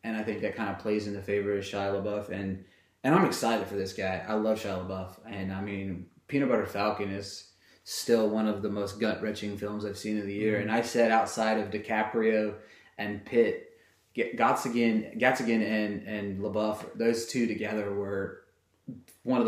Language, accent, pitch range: English, American, 105-125 Hz